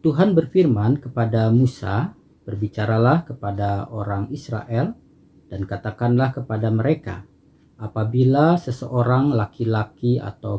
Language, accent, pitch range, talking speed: Indonesian, native, 105-145 Hz, 90 wpm